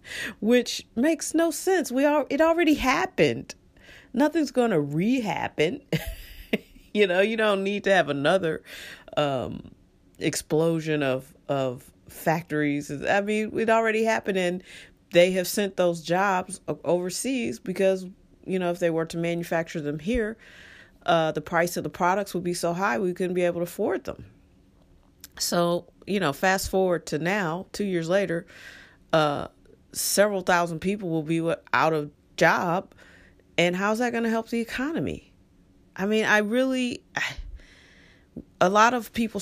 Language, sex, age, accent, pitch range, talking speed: English, female, 40-59, American, 165-225 Hz, 150 wpm